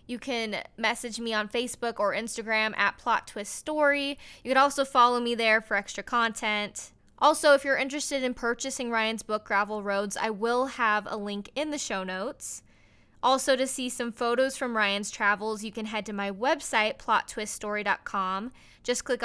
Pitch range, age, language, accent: 210-255 Hz, 10-29, English, American